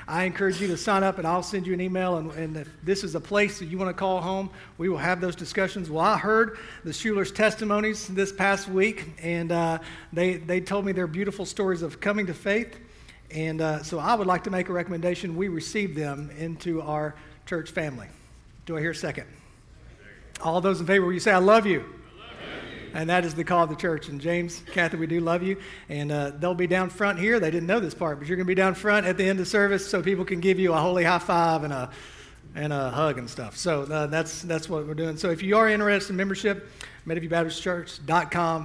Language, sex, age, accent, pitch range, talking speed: English, male, 40-59, American, 160-195 Hz, 240 wpm